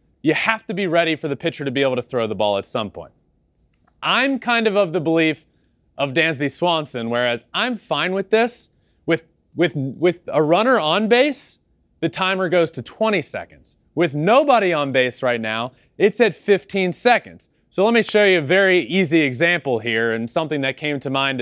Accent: American